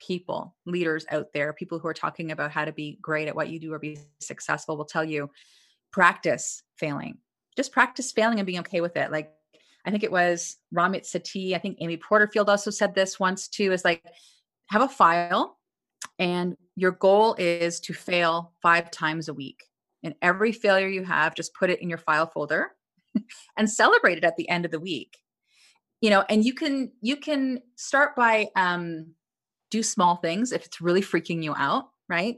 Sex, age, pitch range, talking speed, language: female, 30-49, 165-205 Hz, 195 wpm, English